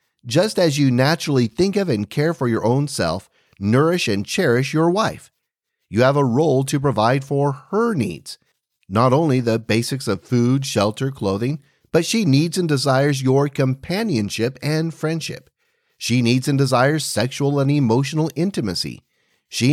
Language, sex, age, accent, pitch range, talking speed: English, male, 40-59, American, 110-150 Hz, 160 wpm